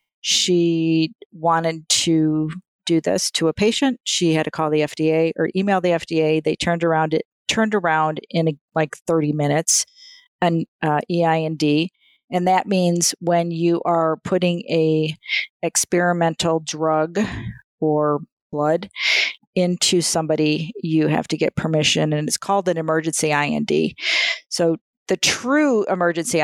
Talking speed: 135 wpm